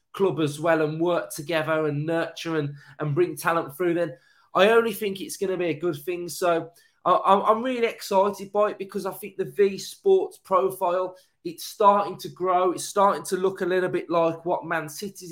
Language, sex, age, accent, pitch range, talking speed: English, male, 20-39, British, 165-200 Hz, 205 wpm